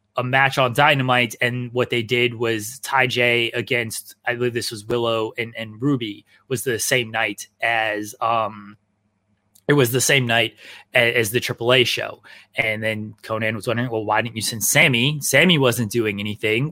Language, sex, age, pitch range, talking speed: English, male, 20-39, 110-130 Hz, 185 wpm